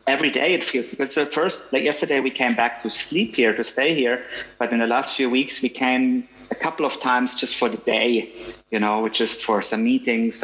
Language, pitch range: German, 110-125 Hz